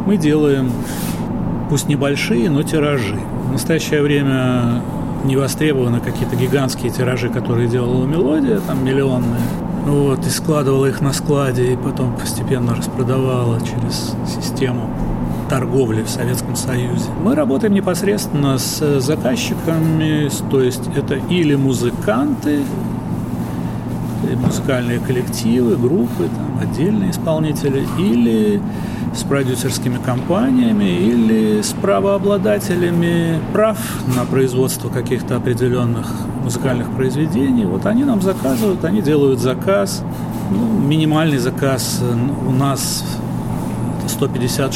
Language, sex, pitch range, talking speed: Russian, male, 120-155 Hz, 100 wpm